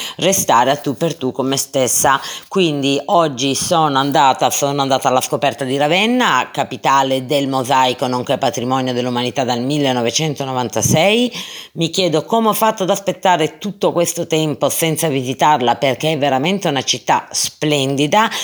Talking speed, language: 145 wpm, Italian